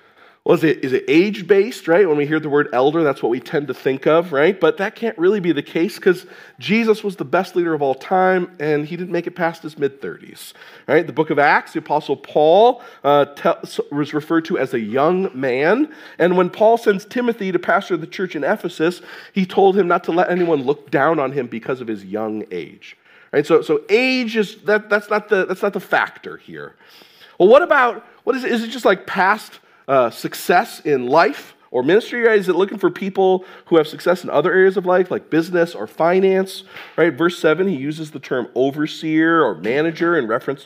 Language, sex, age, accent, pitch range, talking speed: English, male, 40-59, American, 155-220 Hz, 220 wpm